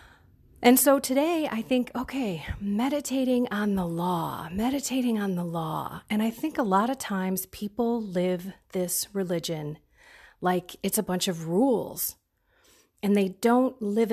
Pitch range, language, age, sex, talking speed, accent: 175-245 Hz, English, 40-59, female, 150 wpm, American